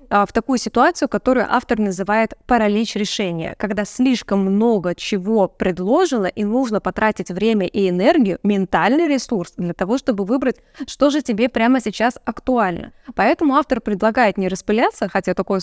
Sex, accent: female, native